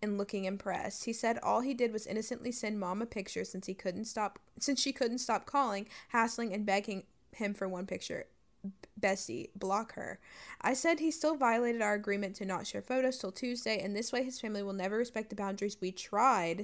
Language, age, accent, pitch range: English, 20-39, American, 195-235 Hz